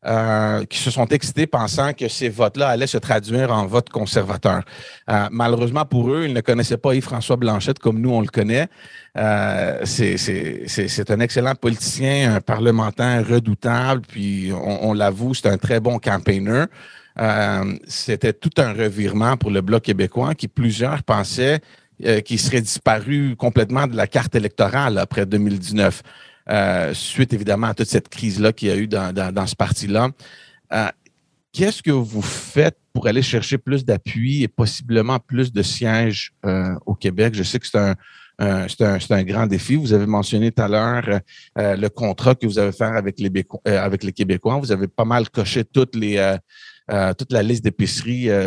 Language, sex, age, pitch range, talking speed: English, male, 40-59, 105-125 Hz, 180 wpm